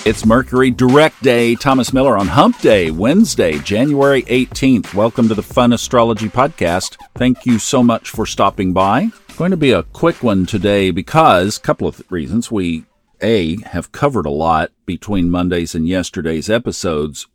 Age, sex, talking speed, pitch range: 50-69, male, 165 wpm, 90-125 Hz